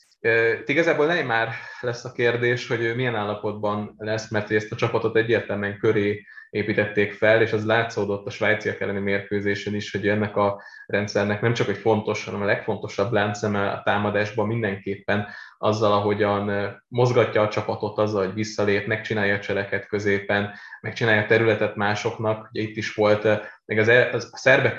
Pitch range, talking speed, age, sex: 105-115 Hz, 155 wpm, 20-39, male